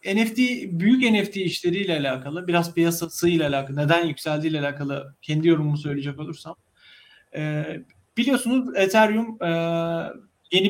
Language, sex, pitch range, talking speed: Turkish, male, 155-195 Hz, 110 wpm